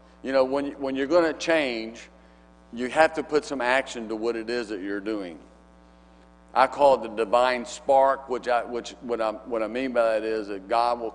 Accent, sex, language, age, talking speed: American, male, English, 50-69, 220 wpm